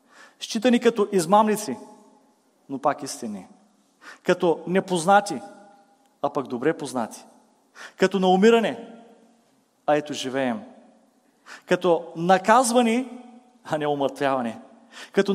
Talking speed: 95 wpm